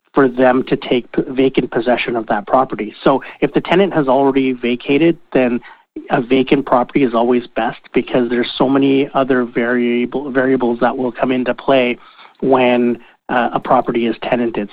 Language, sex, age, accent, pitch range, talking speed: English, male, 40-59, American, 120-135 Hz, 165 wpm